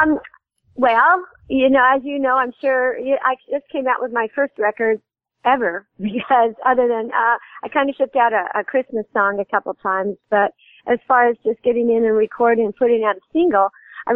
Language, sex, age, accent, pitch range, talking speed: English, female, 50-69, American, 195-240 Hz, 215 wpm